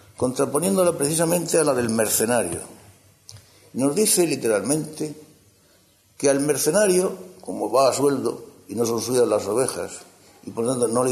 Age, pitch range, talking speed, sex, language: 60-79, 100-165 Hz, 150 wpm, male, Spanish